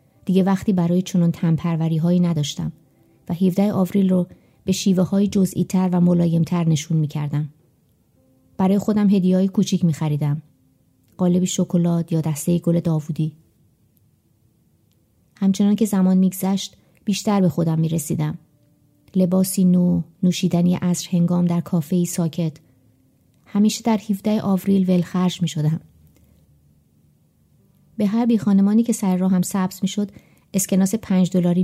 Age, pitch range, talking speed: 30-49, 160-195 Hz, 135 wpm